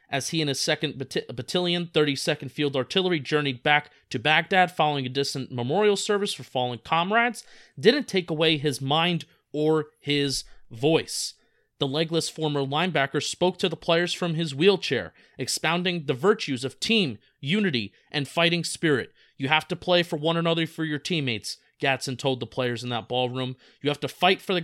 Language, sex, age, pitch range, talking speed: English, male, 30-49, 140-175 Hz, 175 wpm